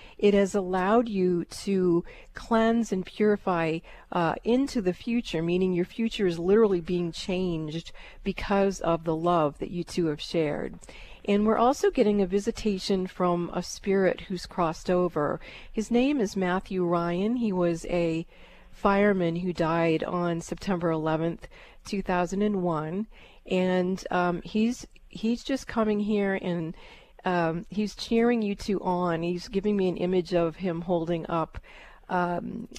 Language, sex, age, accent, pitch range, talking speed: English, female, 40-59, American, 175-205 Hz, 145 wpm